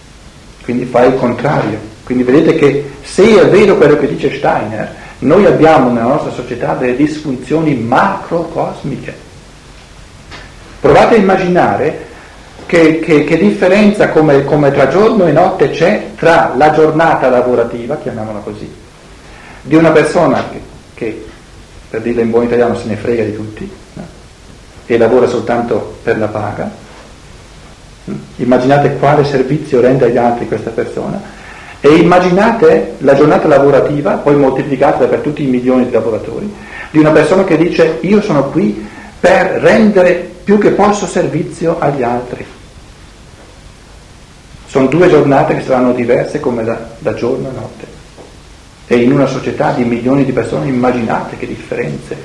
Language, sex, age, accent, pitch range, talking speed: Italian, male, 50-69, native, 120-160 Hz, 140 wpm